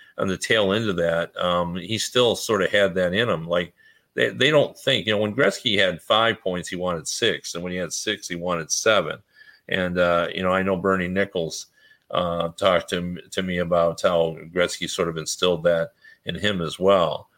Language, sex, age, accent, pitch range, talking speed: English, male, 50-69, American, 85-95 Hz, 215 wpm